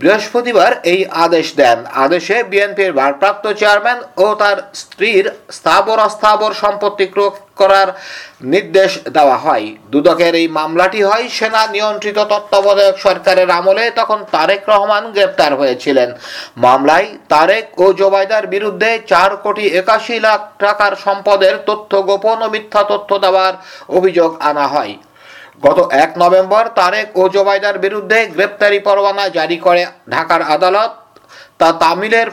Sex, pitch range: male, 180-210 Hz